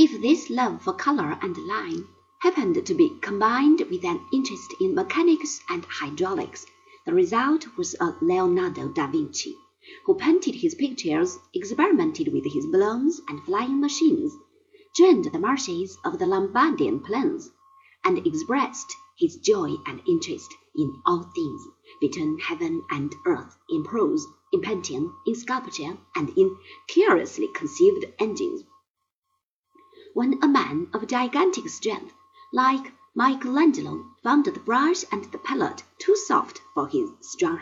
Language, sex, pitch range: Chinese, female, 310-365 Hz